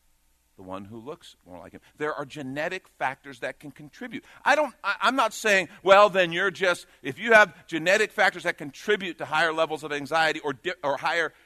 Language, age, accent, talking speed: English, 50-69, American, 210 wpm